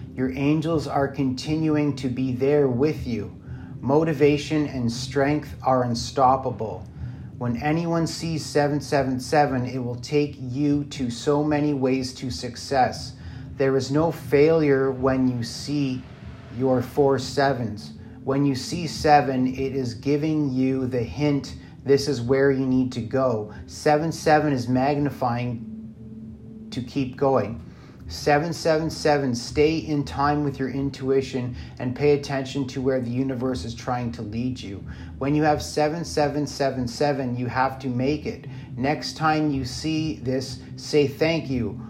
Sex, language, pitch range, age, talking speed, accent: male, English, 125-145 Hz, 30-49, 140 wpm, American